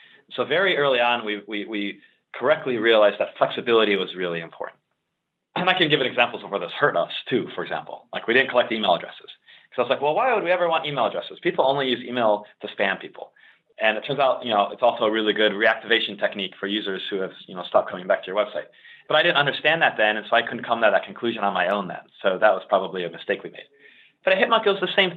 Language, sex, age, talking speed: English, male, 30-49, 260 wpm